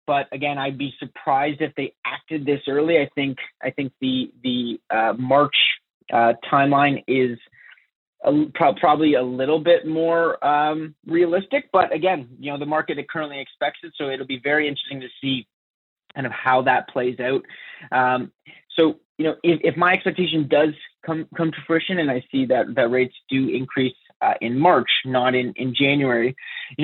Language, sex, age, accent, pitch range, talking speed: English, male, 30-49, American, 130-155 Hz, 180 wpm